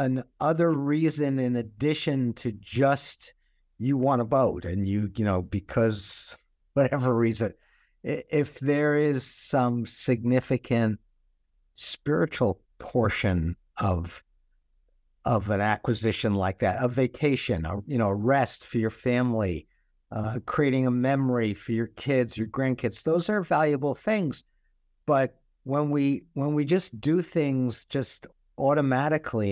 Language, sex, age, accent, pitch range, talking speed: English, male, 60-79, American, 105-140 Hz, 130 wpm